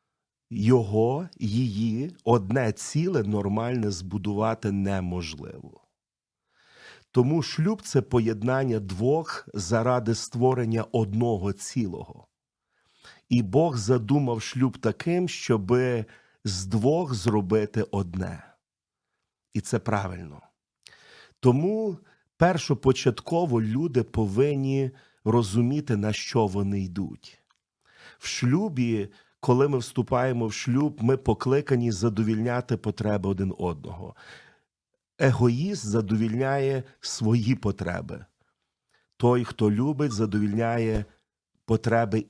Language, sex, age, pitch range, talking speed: Ukrainian, male, 40-59, 110-135 Hz, 90 wpm